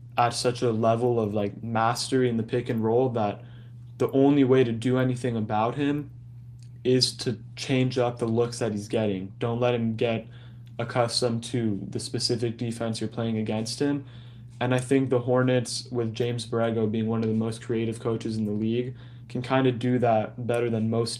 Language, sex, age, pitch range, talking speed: English, male, 20-39, 115-125 Hz, 195 wpm